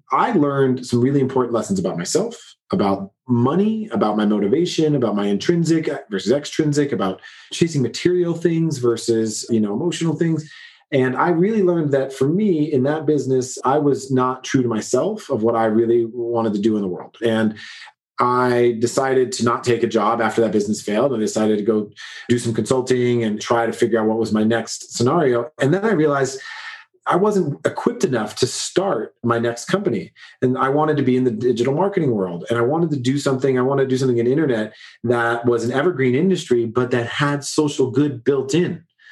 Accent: American